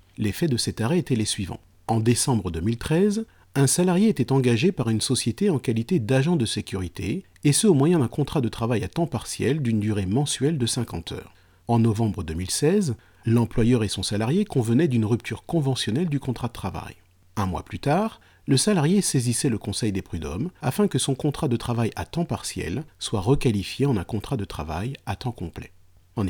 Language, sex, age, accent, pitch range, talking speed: French, male, 40-59, French, 100-145 Hz, 195 wpm